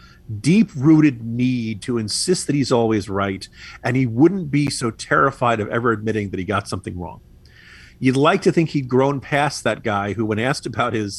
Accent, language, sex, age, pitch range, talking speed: American, English, male, 40-59, 105-160 Hz, 195 wpm